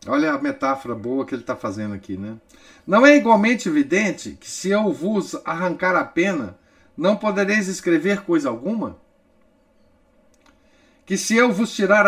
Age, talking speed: 50-69, 155 wpm